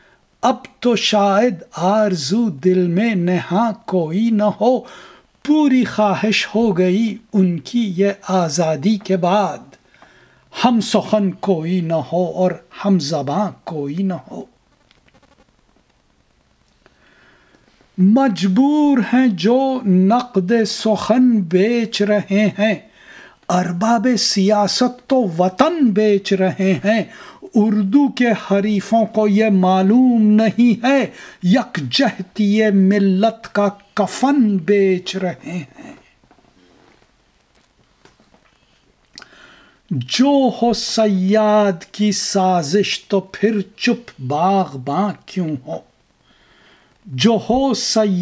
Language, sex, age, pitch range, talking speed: English, male, 60-79, 185-230 Hz, 90 wpm